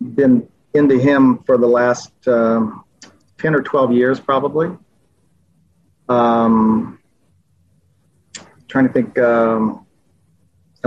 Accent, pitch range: American, 120-140 Hz